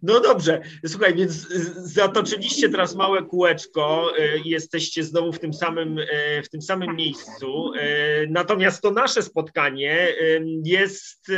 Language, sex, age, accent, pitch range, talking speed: Polish, male, 30-49, native, 155-185 Hz, 120 wpm